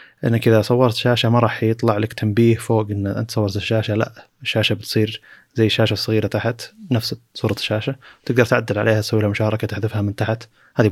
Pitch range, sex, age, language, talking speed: 100-120 Hz, male, 20-39, Arabic, 180 wpm